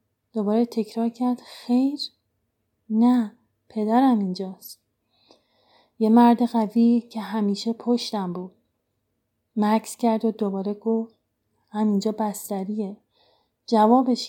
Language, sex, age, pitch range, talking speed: Persian, female, 30-49, 200-240 Hz, 95 wpm